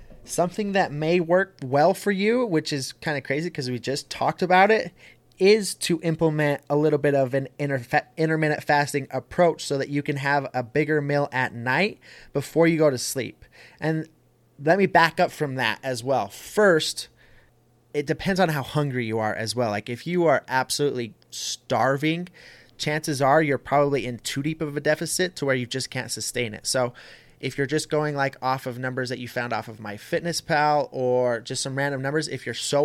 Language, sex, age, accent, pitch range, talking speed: English, male, 20-39, American, 125-155 Hz, 205 wpm